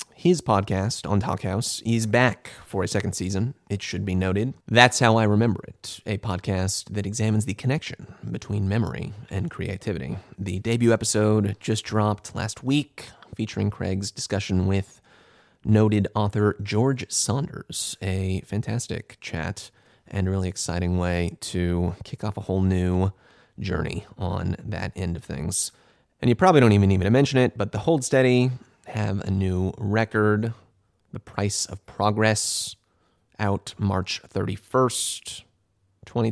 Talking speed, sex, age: 150 wpm, male, 30-49